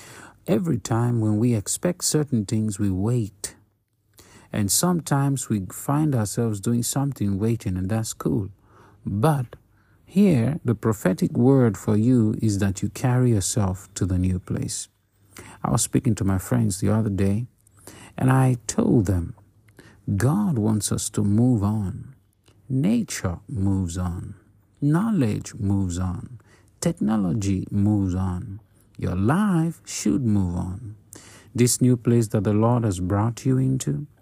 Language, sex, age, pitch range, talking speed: English, male, 50-69, 100-125 Hz, 140 wpm